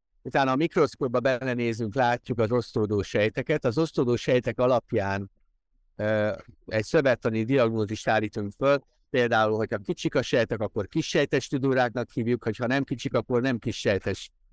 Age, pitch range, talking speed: 60-79, 110-130 Hz, 135 wpm